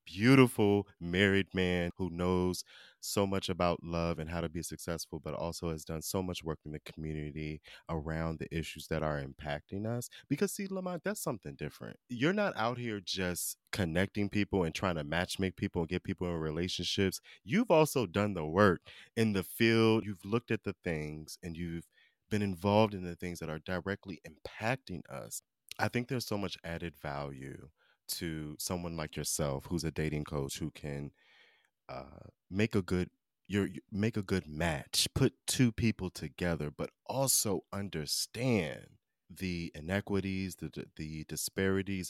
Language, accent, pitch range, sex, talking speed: English, American, 80-100 Hz, male, 170 wpm